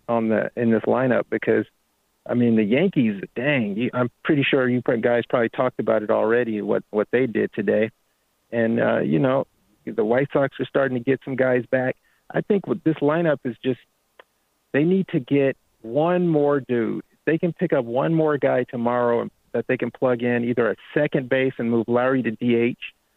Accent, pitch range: American, 120-155 Hz